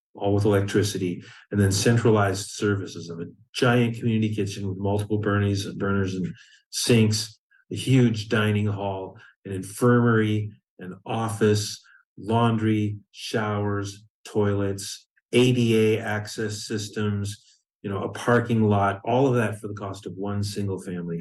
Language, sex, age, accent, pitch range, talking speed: English, male, 40-59, American, 105-150 Hz, 135 wpm